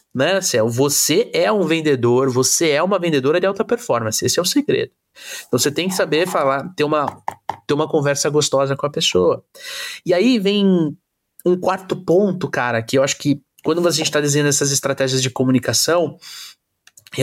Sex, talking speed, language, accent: male, 175 wpm, Portuguese, Brazilian